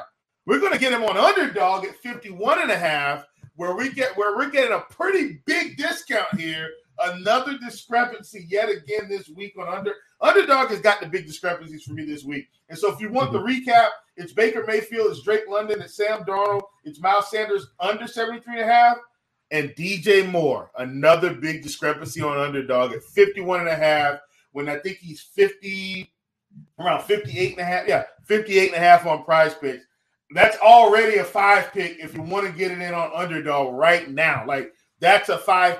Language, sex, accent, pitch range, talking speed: English, male, American, 155-215 Hz, 195 wpm